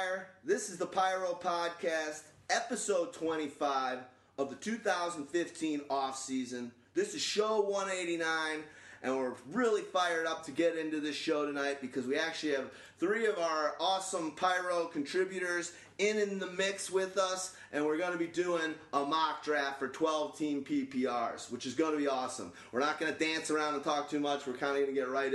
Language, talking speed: English, 180 wpm